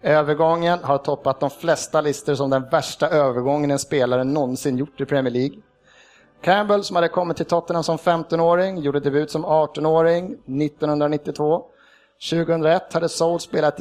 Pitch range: 145-170 Hz